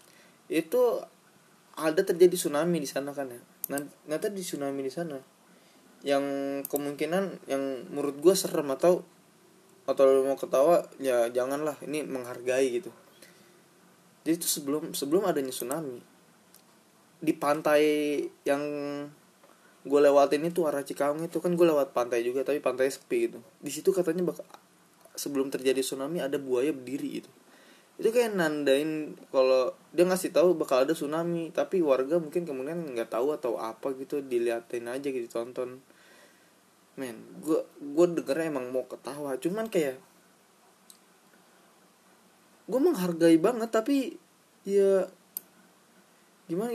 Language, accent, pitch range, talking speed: Indonesian, native, 135-190 Hz, 130 wpm